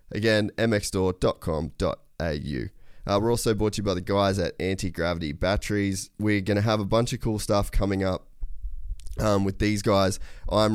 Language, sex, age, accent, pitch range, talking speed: English, male, 20-39, Australian, 85-100 Hz, 160 wpm